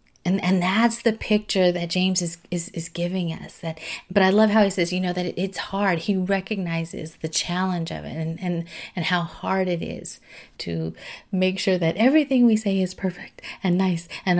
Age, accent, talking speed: 30-49, American, 210 wpm